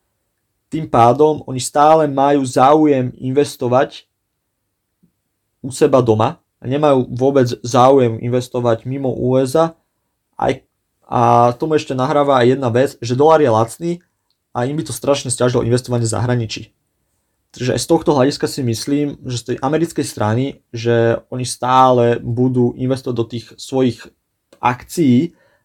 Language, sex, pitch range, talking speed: Slovak, male, 115-140 Hz, 135 wpm